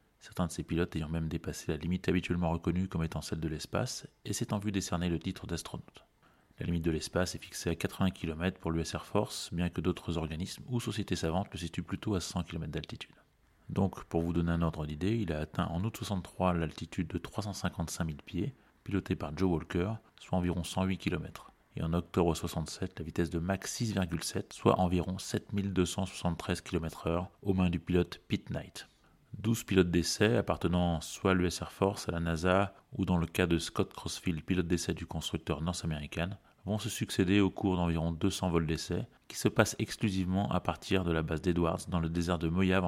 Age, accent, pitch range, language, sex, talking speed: 30-49, French, 85-95 Hz, French, male, 200 wpm